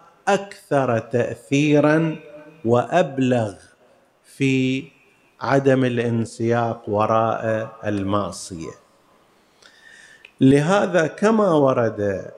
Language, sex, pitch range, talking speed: Arabic, male, 115-130 Hz, 55 wpm